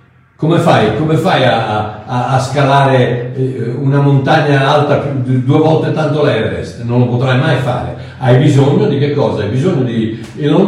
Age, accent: 60-79, native